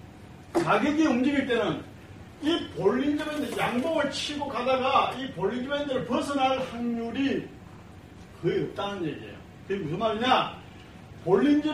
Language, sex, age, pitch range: Korean, male, 40-59, 205-275 Hz